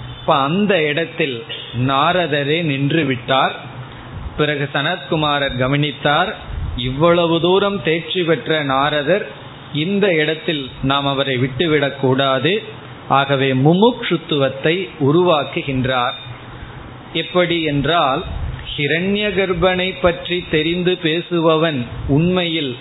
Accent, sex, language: native, male, Tamil